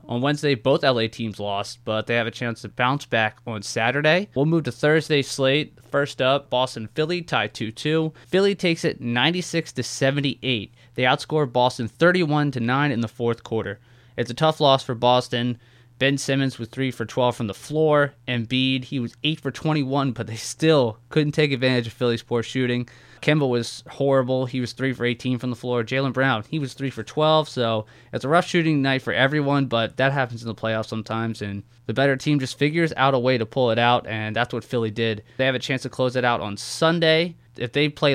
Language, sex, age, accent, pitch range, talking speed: English, male, 20-39, American, 120-145 Hz, 195 wpm